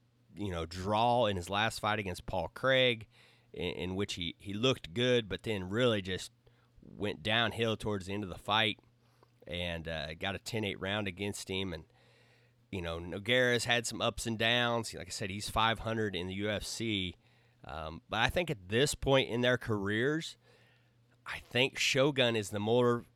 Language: English